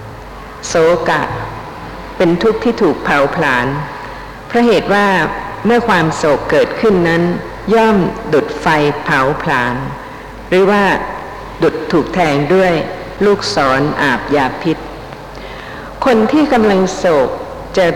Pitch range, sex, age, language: 160-215 Hz, female, 60-79, Thai